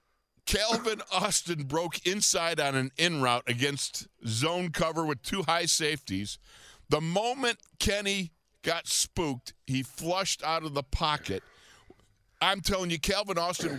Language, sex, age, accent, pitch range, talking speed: English, male, 50-69, American, 140-180 Hz, 135 wpm